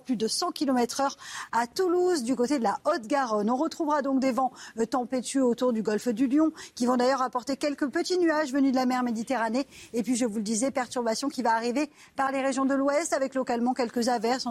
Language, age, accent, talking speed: French, 40-59, French, 225 wpm